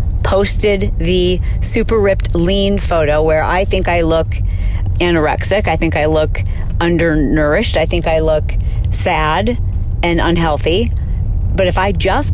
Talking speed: 135 wpm